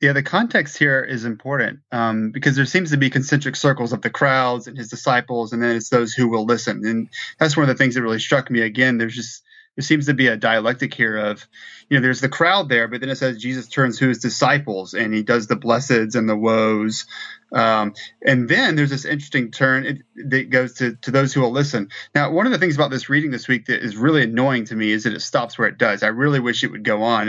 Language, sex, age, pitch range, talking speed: English, male, 30-49, 115-140 Hz, 255 wpm